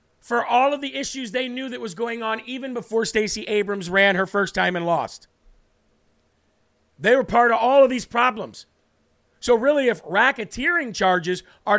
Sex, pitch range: male, 170-230 Hz